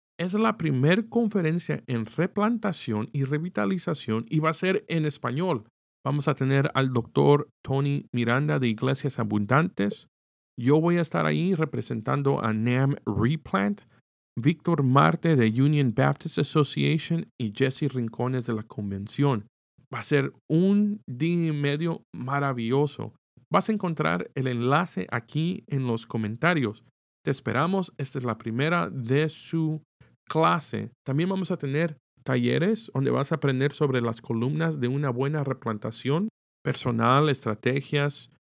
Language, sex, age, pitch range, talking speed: Spanish, male, 50-69, 120-155 Hz, 140 wpm